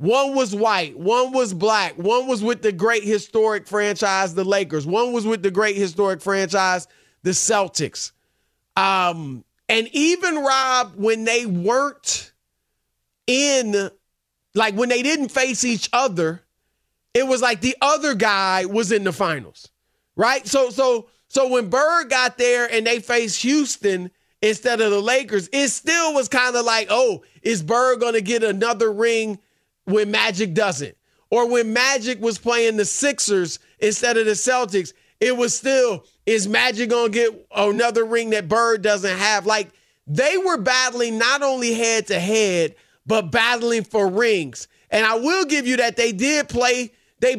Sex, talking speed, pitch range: male, 160 wpm, 205-250 Hz